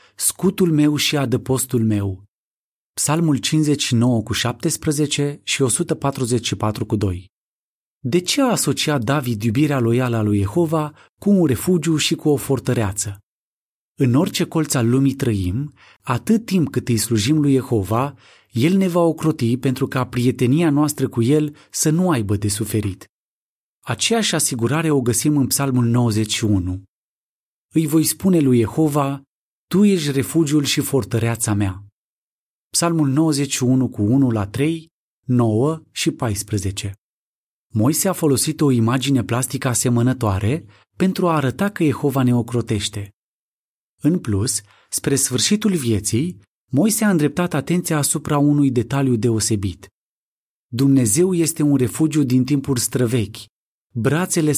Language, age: Romanian, 30-49